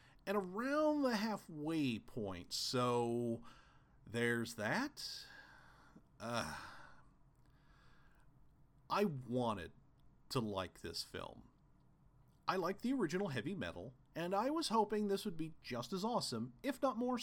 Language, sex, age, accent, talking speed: English, male, 40-59, American, 120 wpm